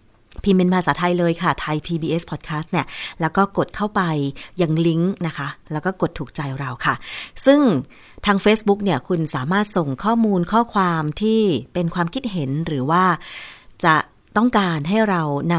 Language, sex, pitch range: Thai, female, 155-195 Hz